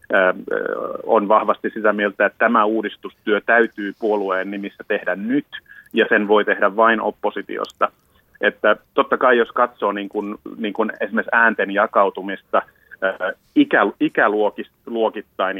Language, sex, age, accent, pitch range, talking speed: Finnish, male, 30-49, native, 105-140 Hz, 120 wpm